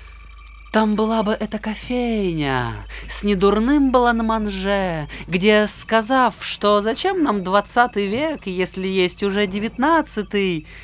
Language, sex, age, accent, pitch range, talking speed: Russian, male, 20-39, native, 135-210 Hz, 115 wpm